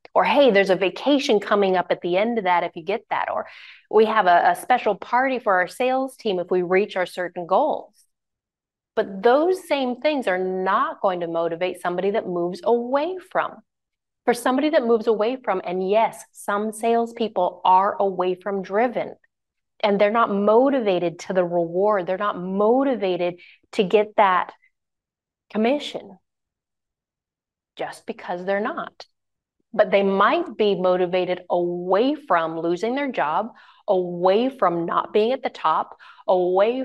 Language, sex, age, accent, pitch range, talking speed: English, female, 30-49, American, 185-235 Hz, 160 wpm